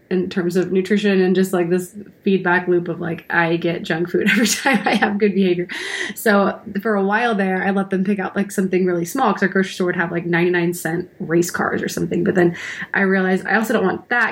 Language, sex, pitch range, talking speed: English, female, 180-210 Hz, 245 wpm